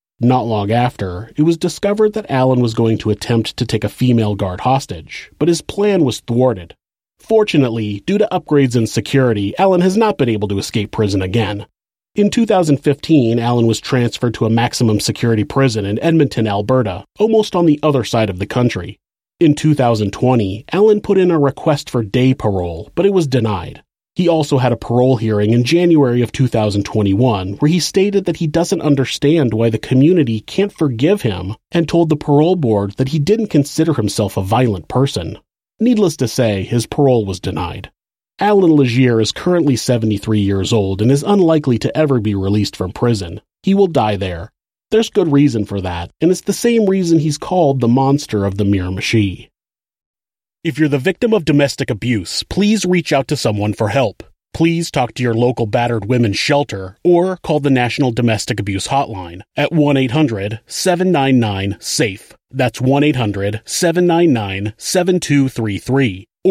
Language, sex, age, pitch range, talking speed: English, male, 30-49, 110-160 Hz, 170 wpm